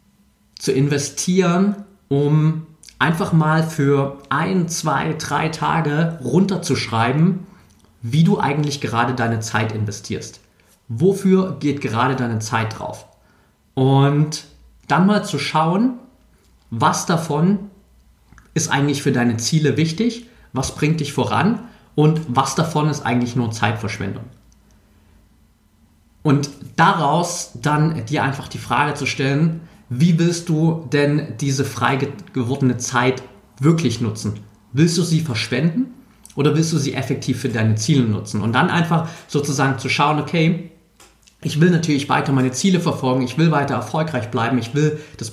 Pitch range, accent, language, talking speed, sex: 125-160 Hz, German, German, 135 wpm, male